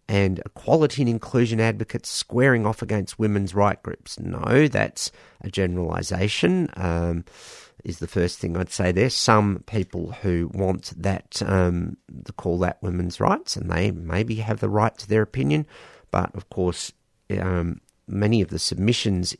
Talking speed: 150 wpm